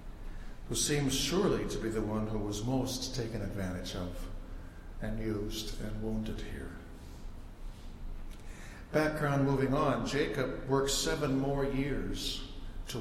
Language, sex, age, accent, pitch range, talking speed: English, male, 60-79, American, 110-140 Hz, 125 wpm